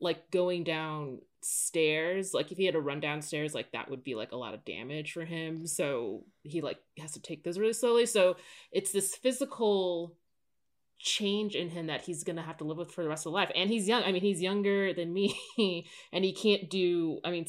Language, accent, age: English, American, 20-39